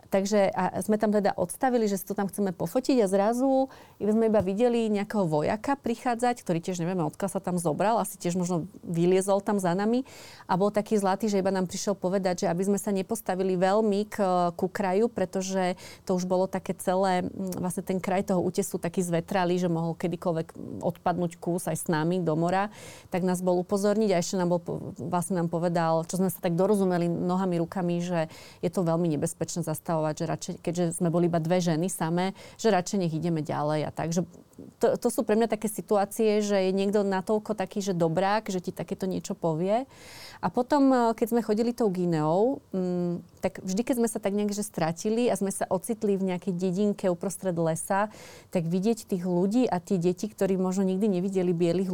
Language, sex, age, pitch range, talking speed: Slovak, female, 30-49, 175-205 Hz, 200 wpm